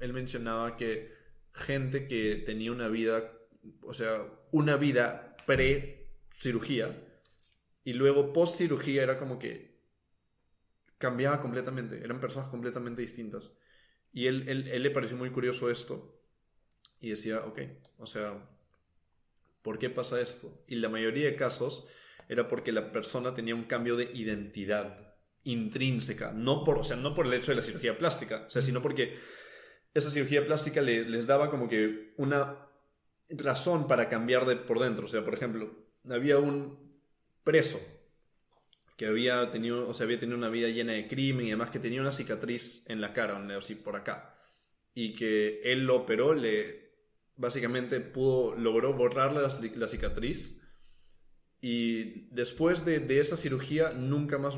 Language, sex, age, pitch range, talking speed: Spanish, male, 20-39, 115-140 Hz, 155 wpm